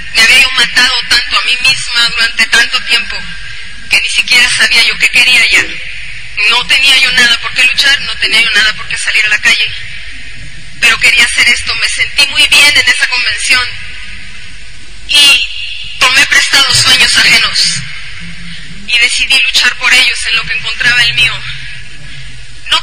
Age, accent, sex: 30-49, Mexican, female